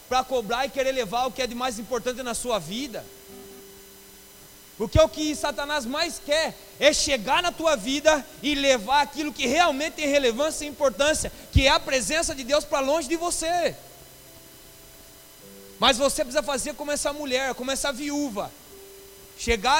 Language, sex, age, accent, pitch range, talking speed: Portuguese, male, 30-49, Brazilian, 255-310 Hz, 165 wpm